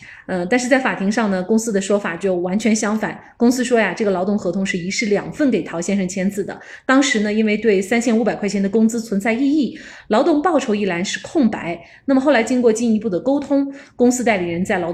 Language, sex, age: Chinese, female, 30-49